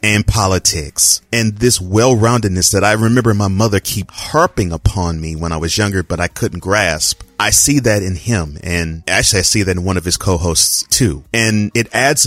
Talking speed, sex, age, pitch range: 200 wpm, male, 30-49, 90-115 Hz